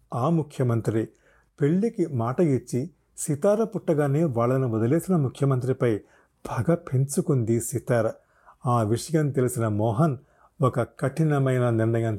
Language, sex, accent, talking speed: Telugu, male, native, 100 wpm